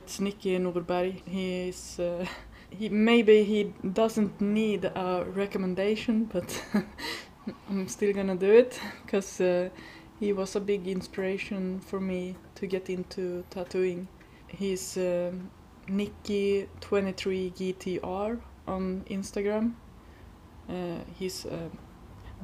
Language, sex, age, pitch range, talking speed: English, female, 20-39, 185-205 Hz, 115 wpm